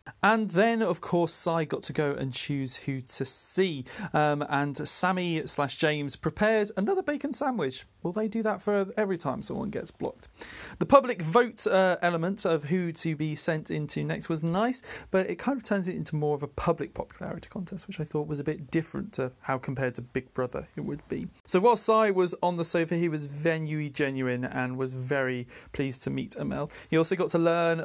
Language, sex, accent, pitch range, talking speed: English, male, British, 150-195 Hz, 210 wpm